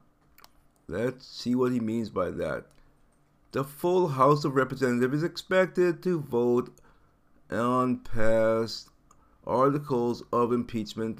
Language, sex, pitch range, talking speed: English, male, 115-145 Hz, 115 wpm